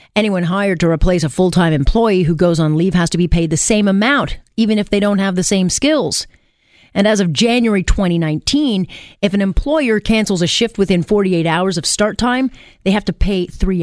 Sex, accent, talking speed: female, American, 210 wpm